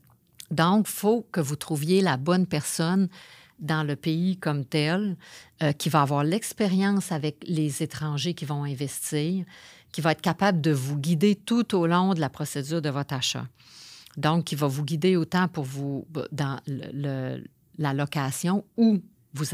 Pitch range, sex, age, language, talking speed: 145-185 Hz, female, 50-69, French, 170 wpm